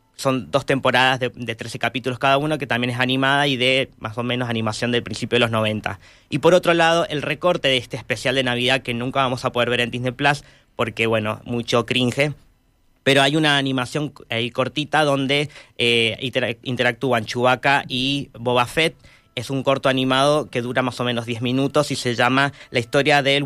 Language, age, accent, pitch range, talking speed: Spanish, 20-39, Argentinian, 120-145 Hz, 200 wpm